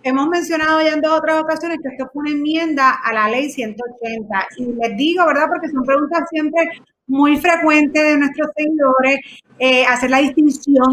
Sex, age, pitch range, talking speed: female, 30-49, 245-305 Hz, 180 wpm